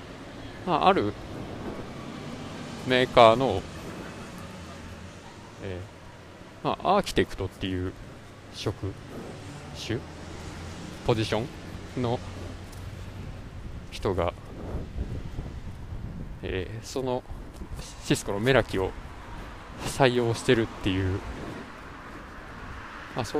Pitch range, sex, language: 90-125 Hz, male, Japanese